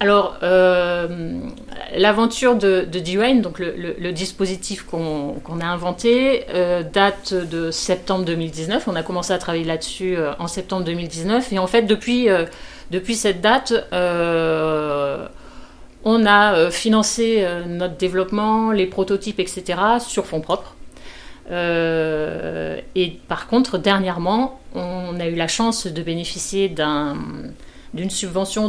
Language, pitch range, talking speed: French, 170-205 Hz, 130 wpm